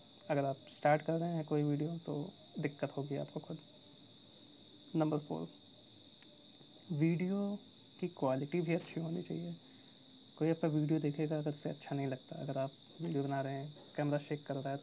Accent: native